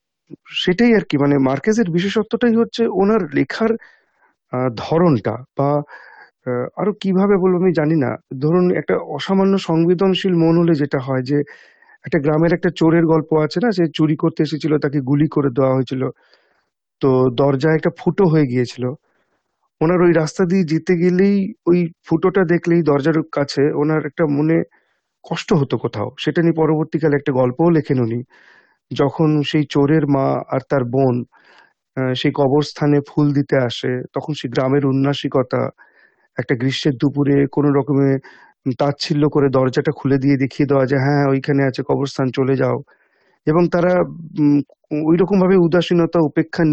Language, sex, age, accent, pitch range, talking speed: Bengali, male, 50-69, native, 140-175 Hz, 140 wpm